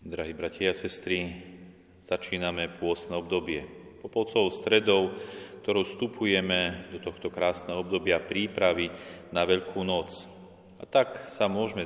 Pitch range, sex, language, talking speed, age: 90-95 Hz, male, Slovak, 115 wpm, 30-49